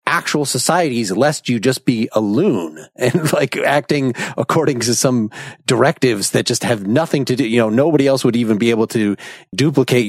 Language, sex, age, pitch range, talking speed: English, male, 30-49, 115-135 Hz, 185 wpm